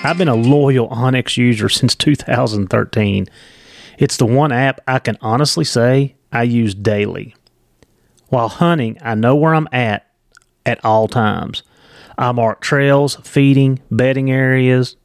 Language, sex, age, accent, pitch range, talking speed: English, male, 30-49, American, 110-135 Hz, 140 wpm